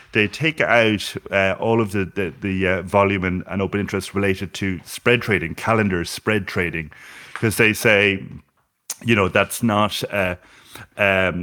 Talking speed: 150 wpm